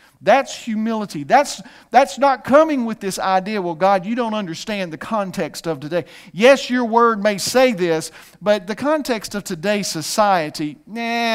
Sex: male